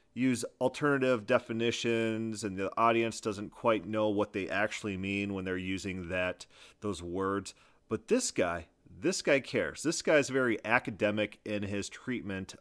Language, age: English, 30-49